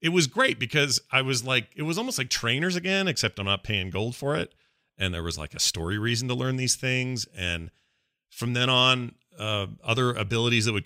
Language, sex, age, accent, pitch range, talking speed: English, male, 40-59, American, 100-125 Hz, 220 wpm